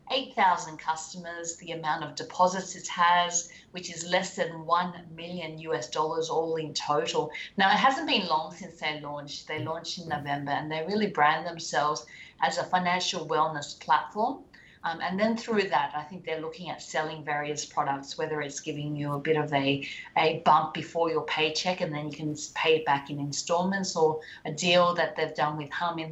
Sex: female